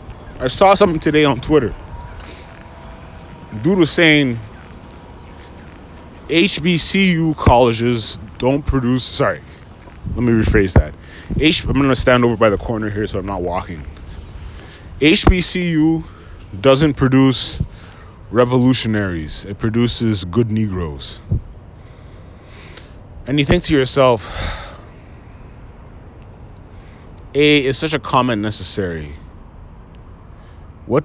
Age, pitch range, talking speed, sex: 20-39, 90-120 Hz, 100 wpm, male